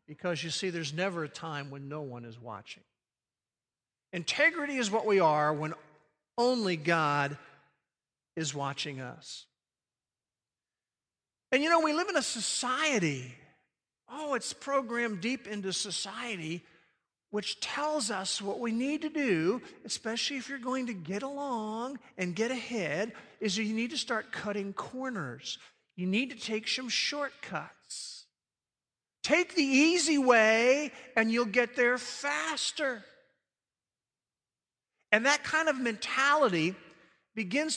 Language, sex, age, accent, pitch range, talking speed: English, male, 50-69, American, 165-255 Hz, 130 wpm